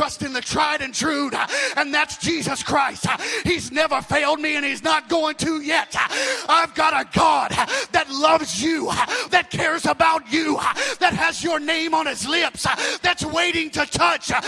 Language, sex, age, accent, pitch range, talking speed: English, male, 30-49, American, 190-300 Hz, 175 wpm